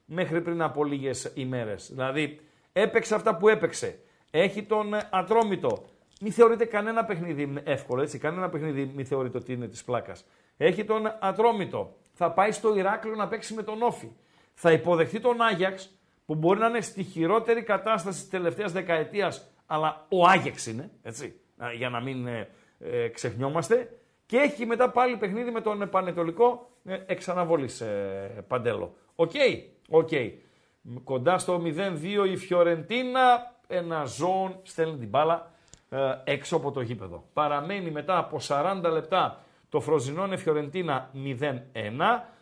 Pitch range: 145-215 Hz